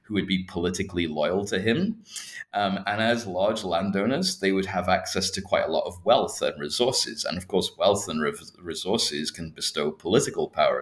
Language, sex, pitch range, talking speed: English, male, 90-105 Hz, 185 wpm